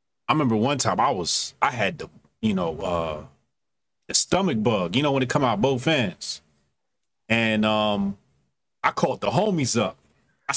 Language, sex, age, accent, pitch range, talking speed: English, male, 30-49, American, 115-140 Hz, 175 wpm